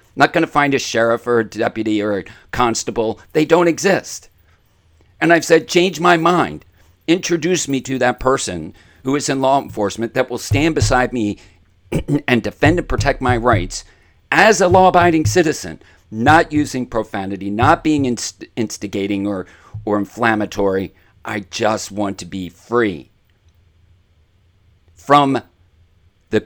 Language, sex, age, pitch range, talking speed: English, male, 50-69, 90-120 Hz, 145 wpm